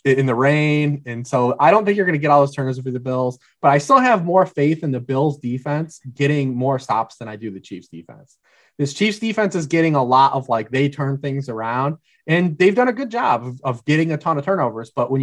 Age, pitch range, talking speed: 30-49, 125-155 Hz, 255 wpm